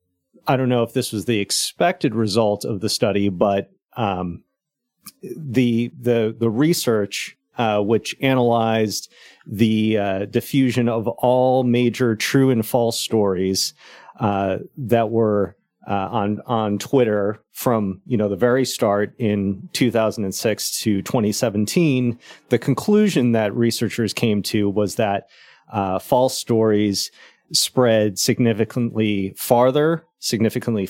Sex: male